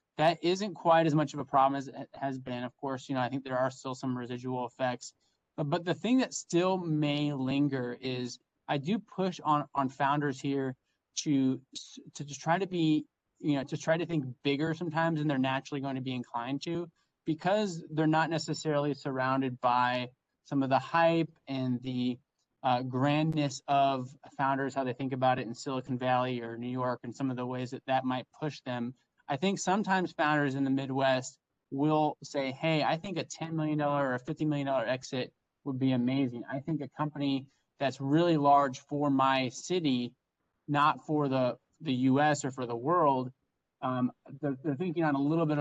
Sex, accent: male, American